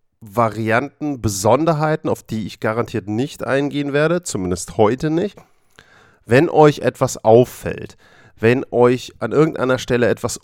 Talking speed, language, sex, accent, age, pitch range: 125 wpm, German, male, German, 40-59, 110-130 Hz